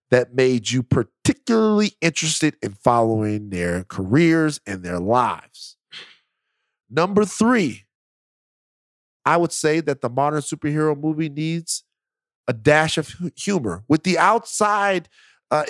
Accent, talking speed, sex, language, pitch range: American, 120 wpm, male, English, 125-180 Hz